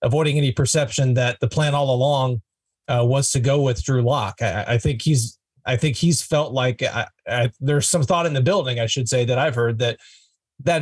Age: 30-49